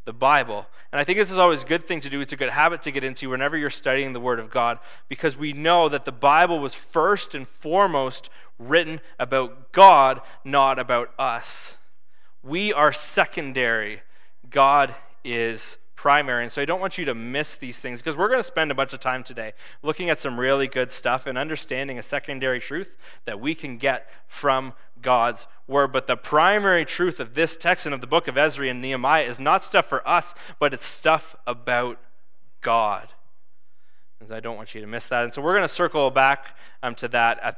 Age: 20-39